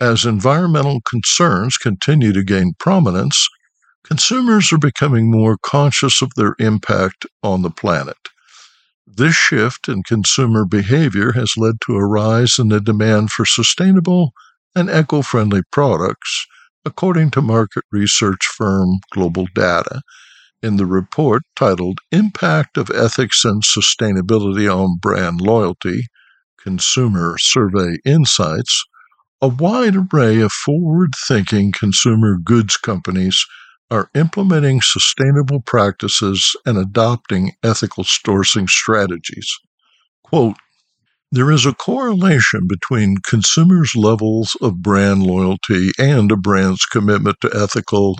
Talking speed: 115 wpm